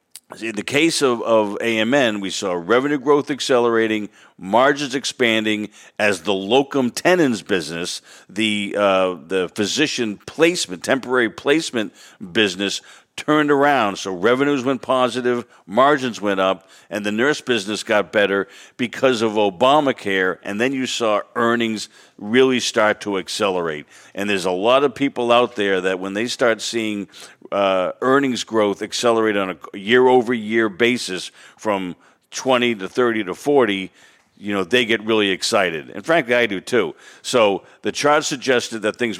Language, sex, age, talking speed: English, male, 50-69, 150 wpm